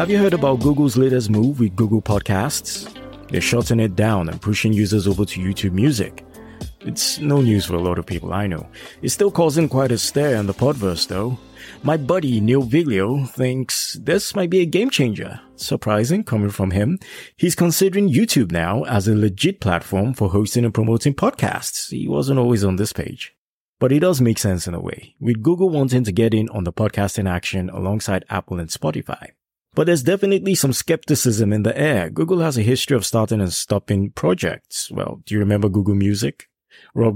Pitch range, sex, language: 100-135 Hz, male, English